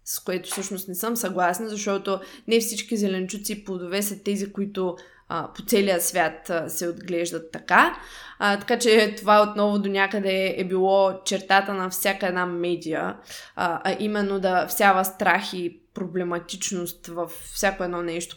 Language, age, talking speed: Bulgarian, 20-39, 155 wpm